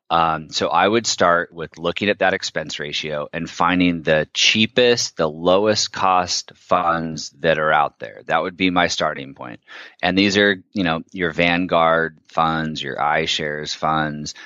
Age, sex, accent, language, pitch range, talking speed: 30-49, male, American, English, 80-105 Hz, 165 wpm